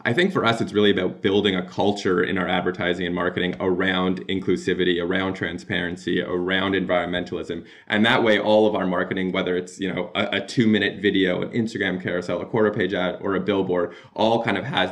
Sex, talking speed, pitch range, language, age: male, 205 wpm, 90-105 Hz, English, 20-39